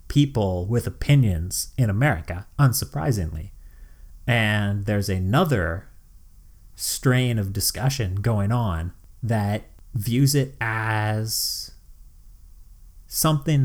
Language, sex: English, male